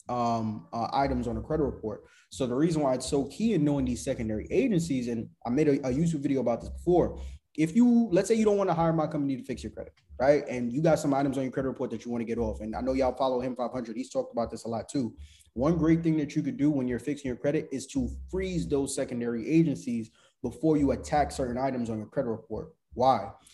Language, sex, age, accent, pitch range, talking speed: English, male, 20-39, American, 120-160 Hz, 260 wpm